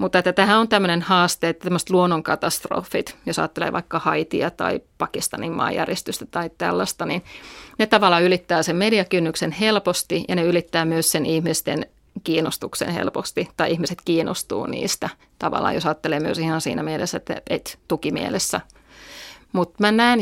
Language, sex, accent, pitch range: Finnish, female, native, 165-185 Hz